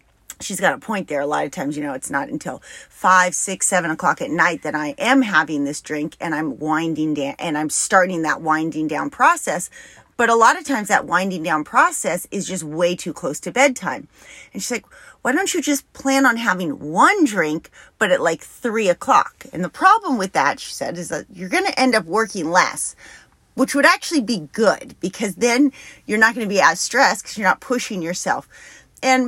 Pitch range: 170-260 Hz